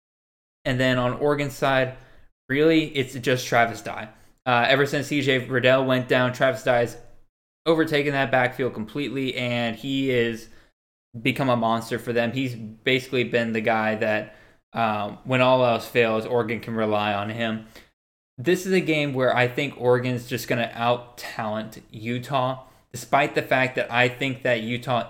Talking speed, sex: 165 wpm, male